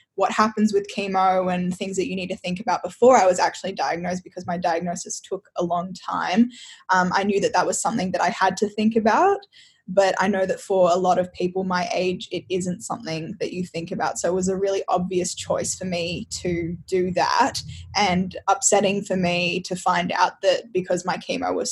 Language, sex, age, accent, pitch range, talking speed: English, female, 10-29, Australian, 180-230 Hz, 220 wpm